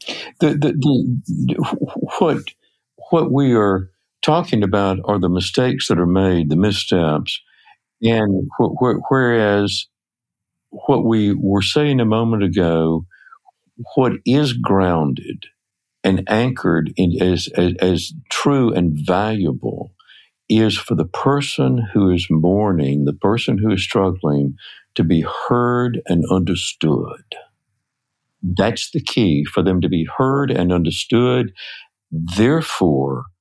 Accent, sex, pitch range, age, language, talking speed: American, male, 90-120 Hz, 60-79, English, 120 wpm